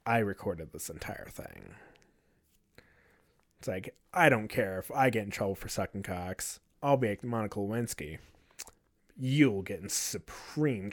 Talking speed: 150 wpm